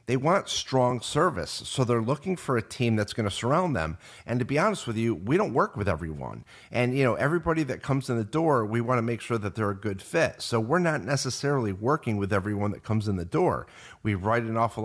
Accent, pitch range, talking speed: American, 100-135 Hz, 245 wpm